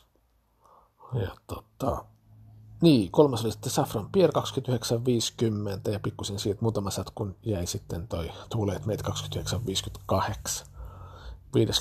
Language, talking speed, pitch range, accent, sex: Finnish, 105 wpm, 95-120 Hz, native, male